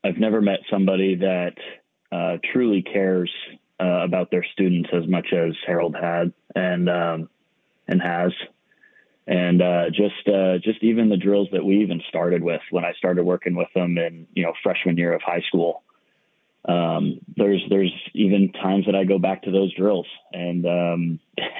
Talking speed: 170 wpm